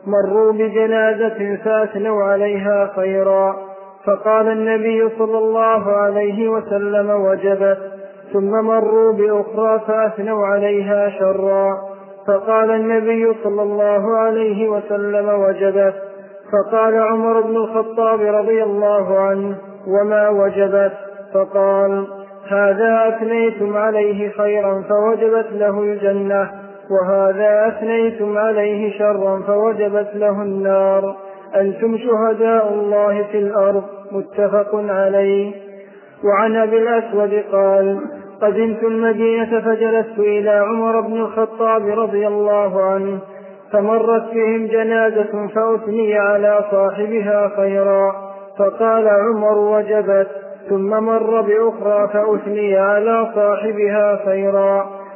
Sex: male